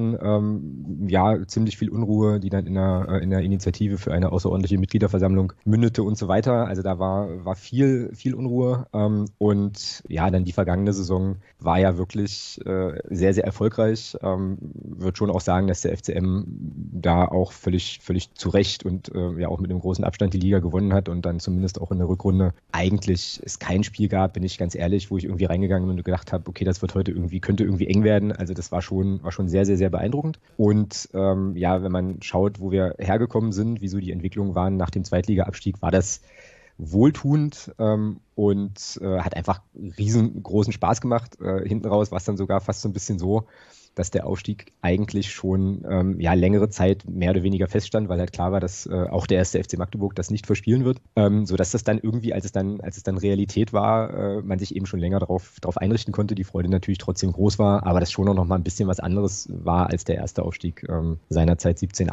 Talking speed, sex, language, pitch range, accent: 210 wpm, male, German, 90-105 Hz, German